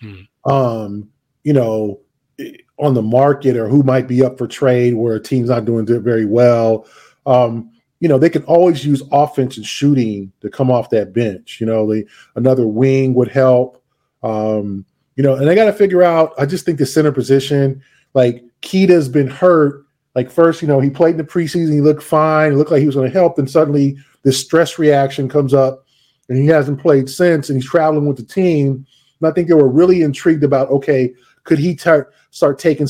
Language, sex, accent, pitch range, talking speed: English, male, American, 130-155 Hz, 210 wpm